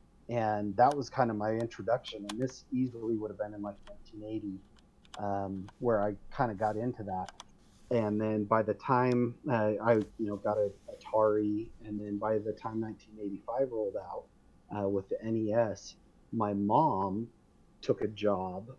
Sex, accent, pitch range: male, American, 100-120 Hz